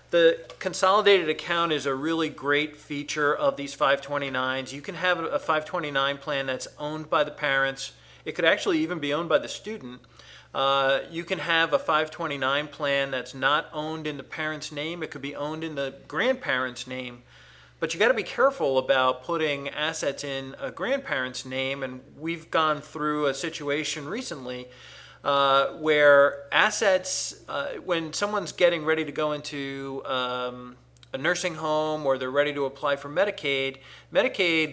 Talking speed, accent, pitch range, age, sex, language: 165 wpm, American, 135-160 Hz, 40-59, male, English